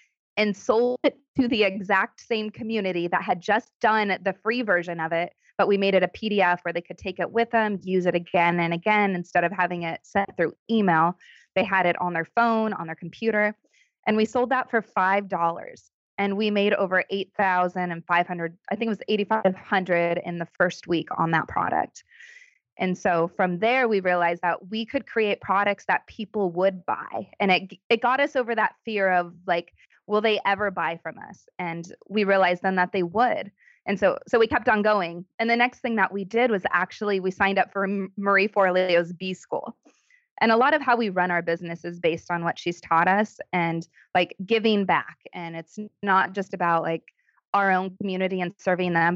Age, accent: 20-39, American